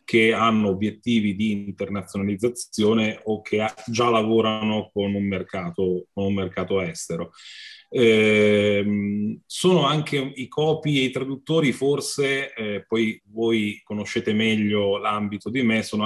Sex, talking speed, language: male, 125 wpm, Italian